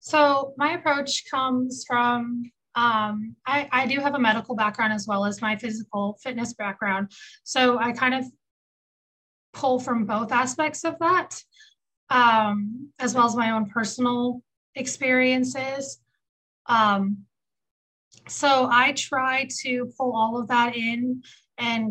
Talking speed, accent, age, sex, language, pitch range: 135 wpm, American, 20-39, female, English, 215-255 Hz